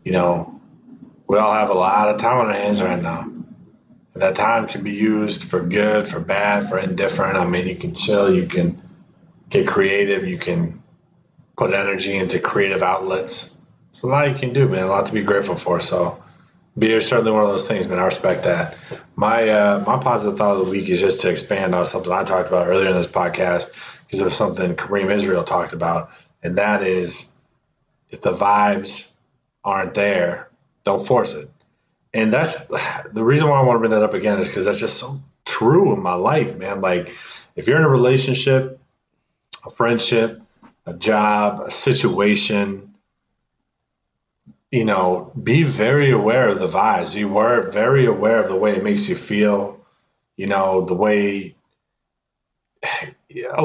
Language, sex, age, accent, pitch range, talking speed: English, male, 30-49, American, 100-135 Hz, 185 wpm